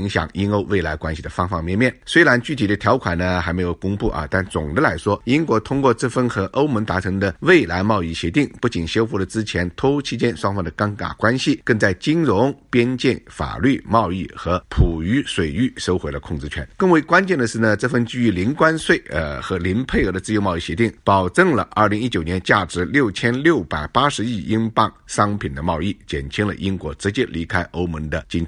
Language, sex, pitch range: Chinese, male, 85-120 Hz